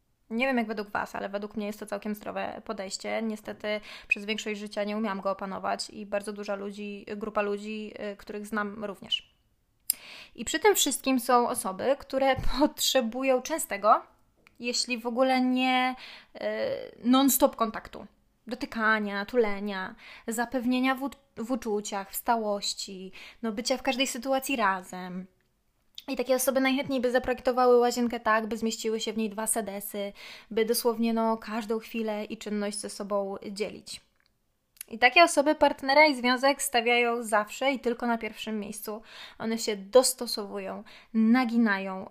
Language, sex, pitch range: Polish, female, 210-255 Hz